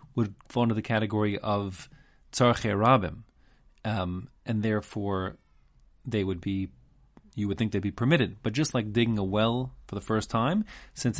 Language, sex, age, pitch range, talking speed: English, male, 30-49, 100-130 Hz, 165 wpm